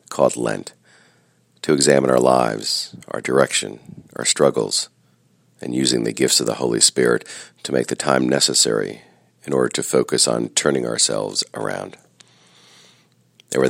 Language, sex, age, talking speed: English, male, 40-59, 140 wpm